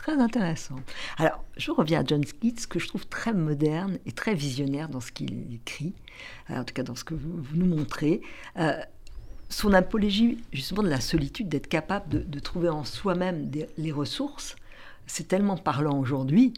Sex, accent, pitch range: female, French, 155-220 Hz